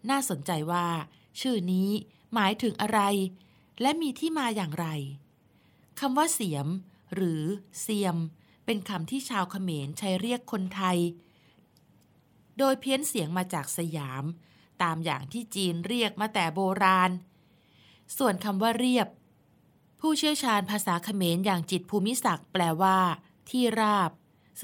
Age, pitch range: 20-39, 165-215 Hz